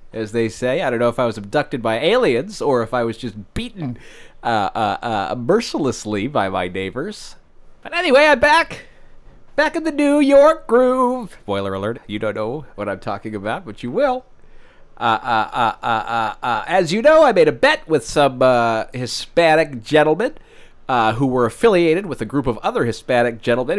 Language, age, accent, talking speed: English, 40-59, American, 190 wpm